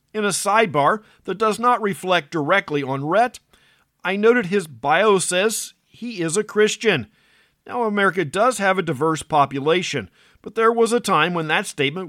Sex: male